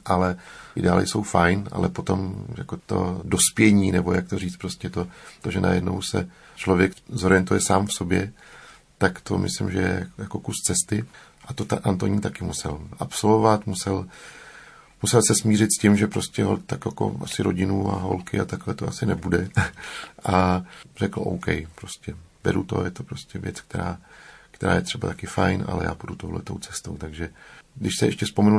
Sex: male